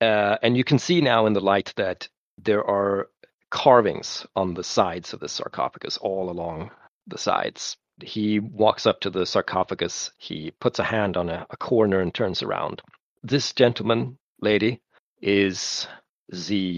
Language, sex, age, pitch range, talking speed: English, male, 40-59, 90-115 Hz, 160 wpm